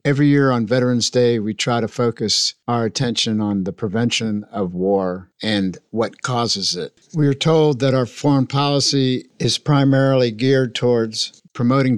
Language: English